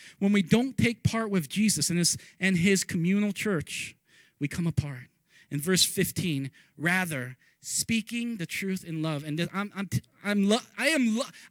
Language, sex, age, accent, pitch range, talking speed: English, male, 30-49, American, 175-245 Hz, 180 wpm